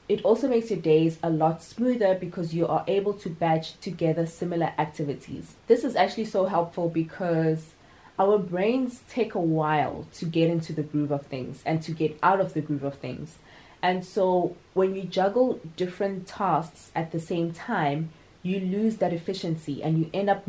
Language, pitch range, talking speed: English, 160-200 Hz, 185 wpm